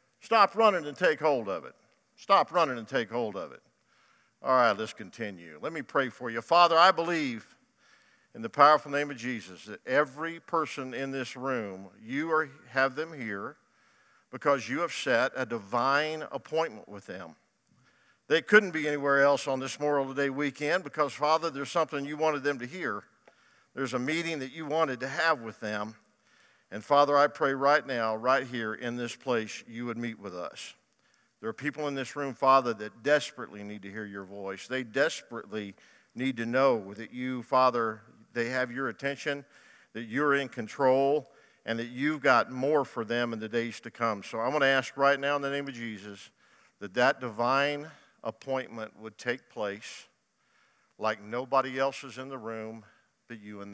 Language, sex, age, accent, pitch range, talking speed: English, male, 50-69, American, 115-145 Hz, 190 wpm